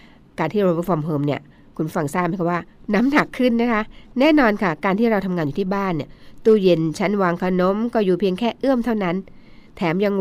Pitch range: 165-215 Hz